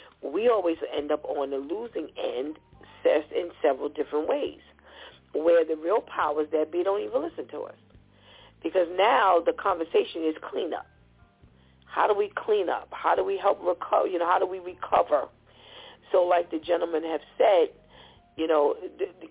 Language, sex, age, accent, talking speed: English, female, 40-59, American, 175 wpm